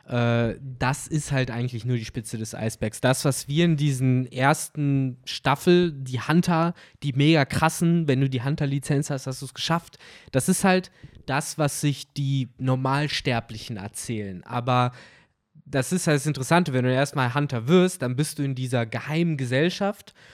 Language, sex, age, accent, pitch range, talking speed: German, male, 20-39, German, 125-145 Hz, 170 wpm